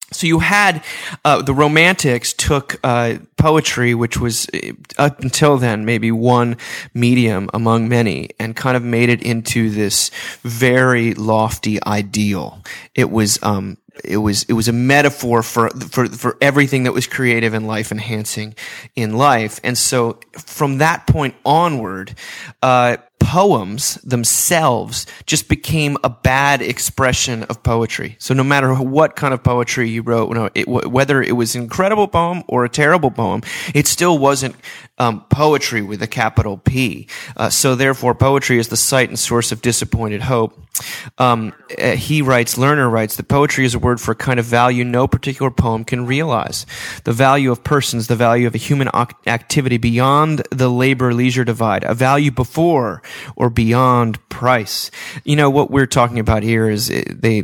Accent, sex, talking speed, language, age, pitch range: American, male, 165 wpm, English, 30-49, 115-135 Hz